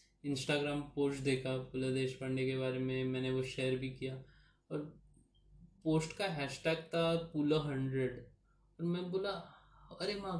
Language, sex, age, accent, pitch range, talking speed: Hindi, male, 20-39, native, 135-170 Hz, 145 wpm